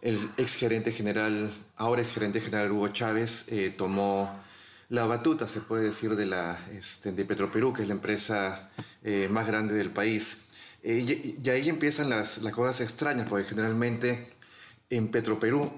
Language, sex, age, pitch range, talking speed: Spanish, male, 30-49, 105-120 Hz, 165 wpm